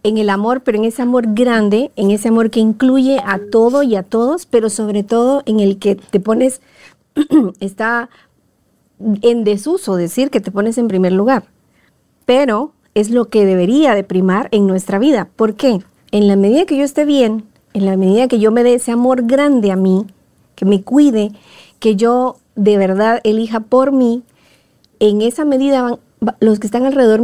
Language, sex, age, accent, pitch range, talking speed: Spanish, female, 40-59, American, 210-255 Hz, 185 wpm